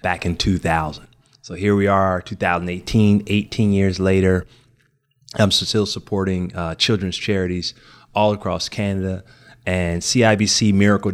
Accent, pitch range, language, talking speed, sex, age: American, 90-115 Hz, English, 125 wpm, male, 30-49